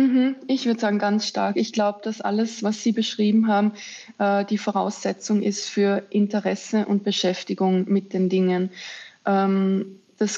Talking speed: 140 wpm